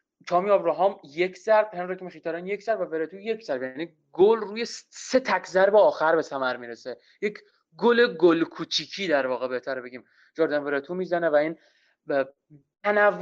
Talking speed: 165 wpm